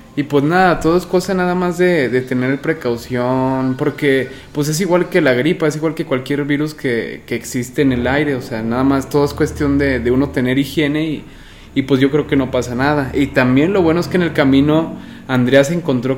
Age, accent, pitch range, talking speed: 20-39, Mexican, 125-145 Hz, 235 wpm